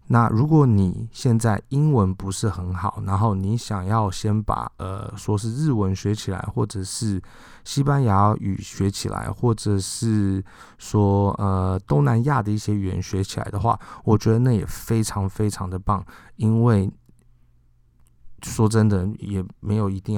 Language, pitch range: Chinese, 95-115 Hz